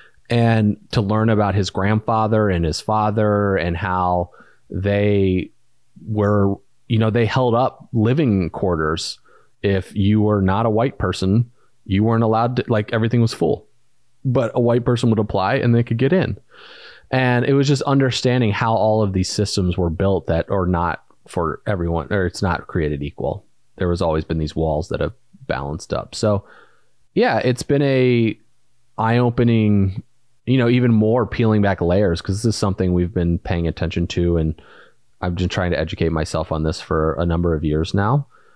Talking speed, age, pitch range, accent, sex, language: 180 wpm, 30-49, 90-115 Hz, American, male, English